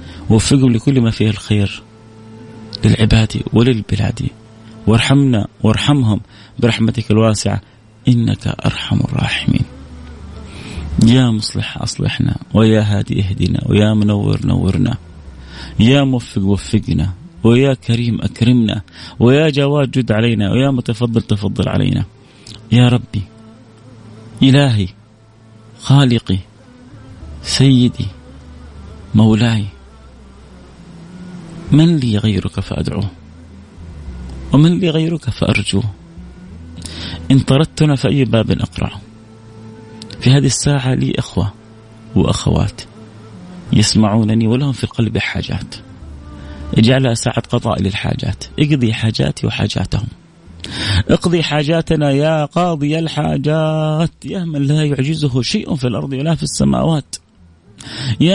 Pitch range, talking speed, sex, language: 100-135 Hz, 95 wpm, male, Arabic